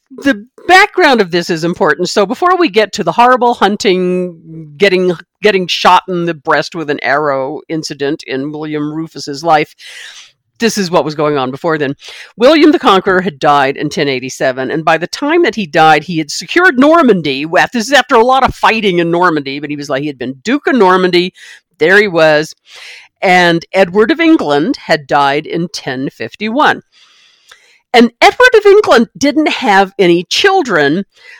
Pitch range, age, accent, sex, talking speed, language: 155-245 Hz, 50-69, American, female, 180 wpm, English